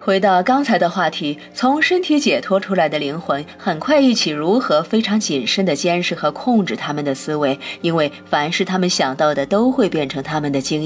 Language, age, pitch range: Chinese, 20-39, 155-215 Hz